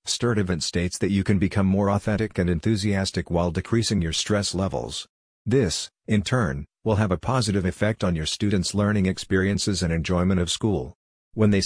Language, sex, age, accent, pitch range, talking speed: English, male, 50-69, American, 90-105 Hz, 175 wpm